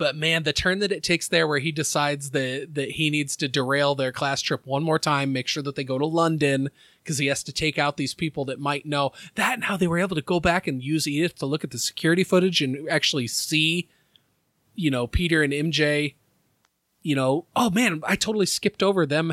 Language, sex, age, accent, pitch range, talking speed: English, male, 30-49, American, 135-165 Hz, 235 wpm